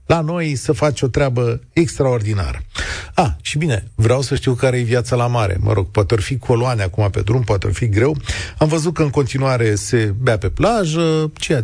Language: Romanian